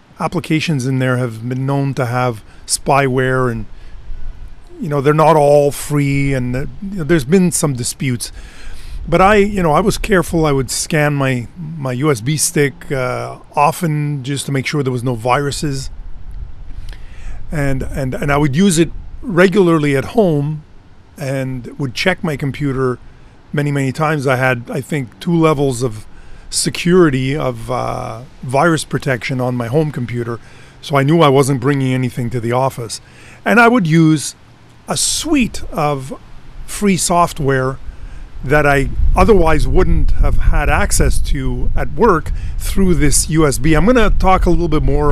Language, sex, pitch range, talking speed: English, male, 125-155 Hz, 160 wpm